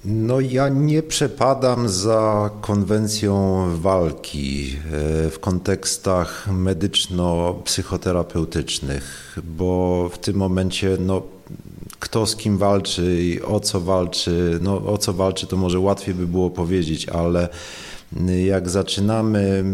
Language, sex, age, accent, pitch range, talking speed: Polish, male, 40-59, native, 85-100 Hz, 110 wpm